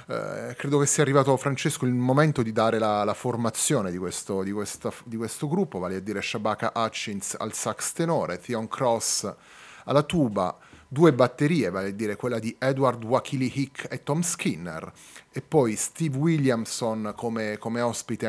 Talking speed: 170 wpm